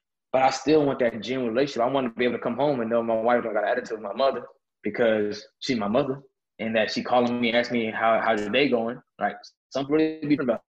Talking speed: 250 wpm